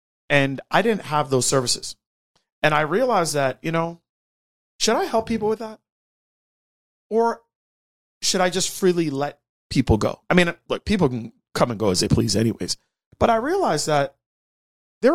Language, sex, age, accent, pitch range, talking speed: English, male, 30-49, American, 115-165 Hz, 170 wpm